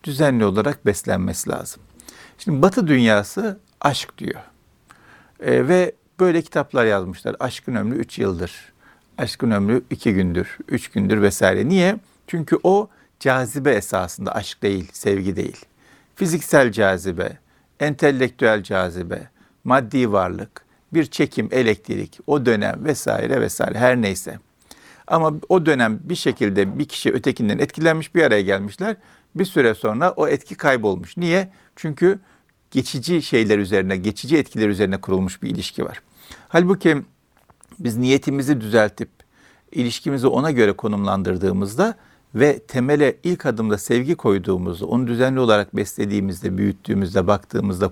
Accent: native